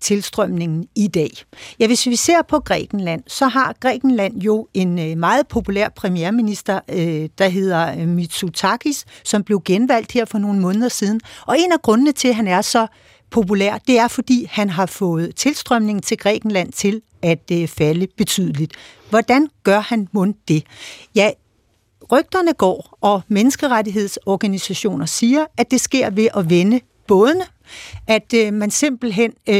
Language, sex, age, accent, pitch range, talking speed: Danish, female, 60-79, native, 185-235 Hz, 145 wpm